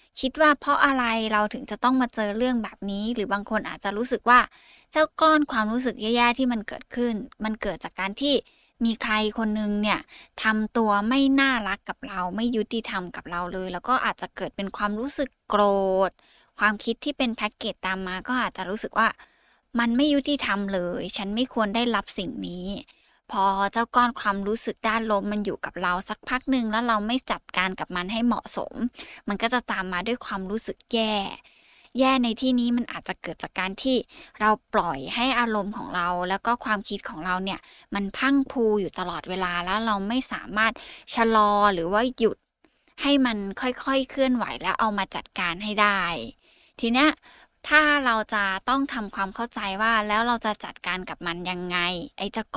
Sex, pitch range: female, 200-245 Hz